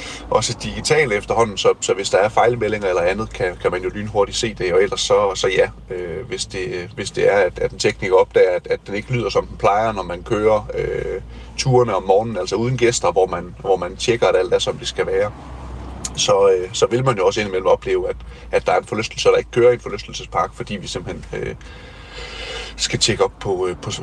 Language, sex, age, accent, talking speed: Danish, male, 30-49, native, 235 wpm